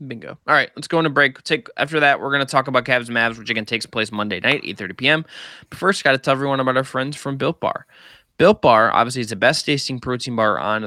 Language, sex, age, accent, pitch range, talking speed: English, male, 20-39, American, 115-150 Hz, 275 wpm